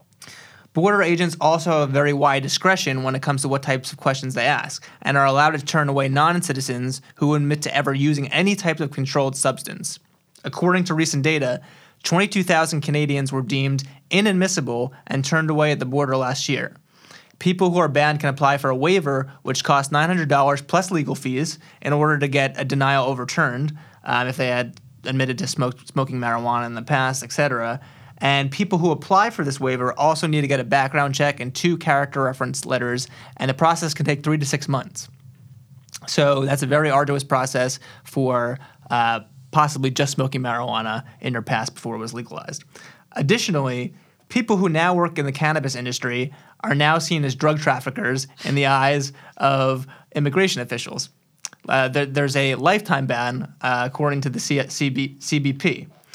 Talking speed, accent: 175 wpm, American